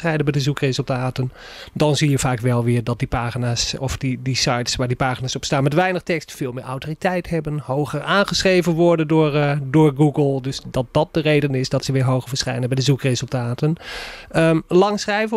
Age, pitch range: 30-49, 130-160 Hz